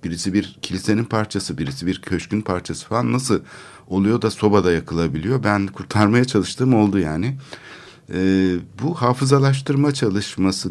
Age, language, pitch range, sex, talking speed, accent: 60-79, Turkish, 95-120 Hz, male, 130 wpm, native